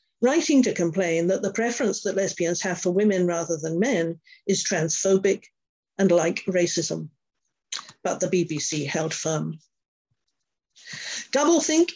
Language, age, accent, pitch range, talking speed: English, 50-69, British, 170-215 Hz, 125 wpm